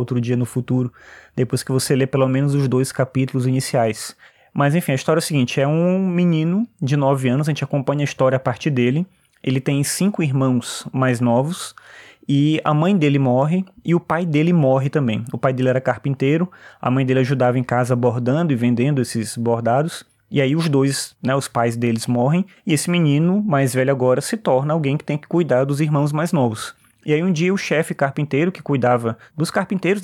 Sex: male